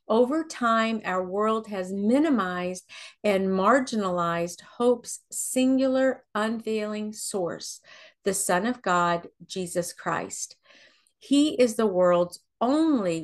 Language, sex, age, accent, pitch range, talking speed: English, female, 50-69, American, 185-240 Hz, 105 wpm